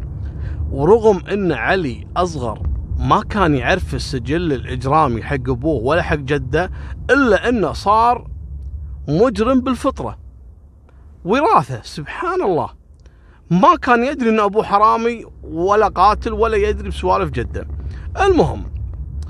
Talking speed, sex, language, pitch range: 110 wpm, male, Arabic, 75-130 Hz